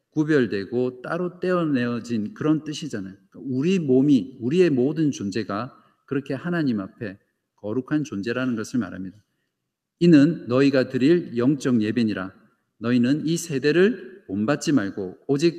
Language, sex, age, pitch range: Korean, male, 50-69, 110-155 Hz